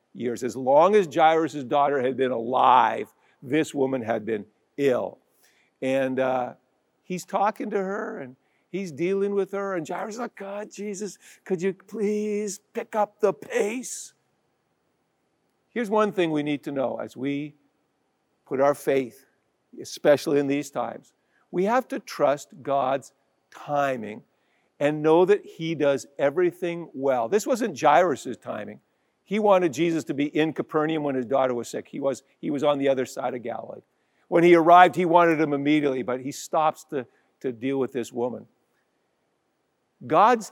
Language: English